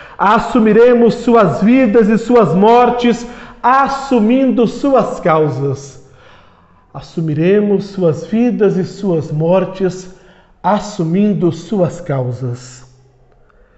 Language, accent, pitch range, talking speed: Portuguese, Brazilian, 160-215 Hz, 80 wpm